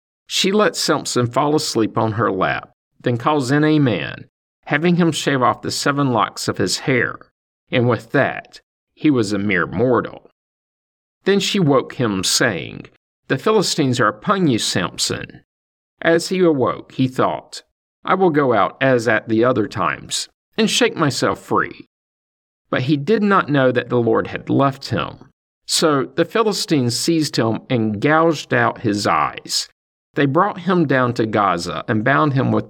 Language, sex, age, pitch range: English, male, 50-69, 110-155 Hz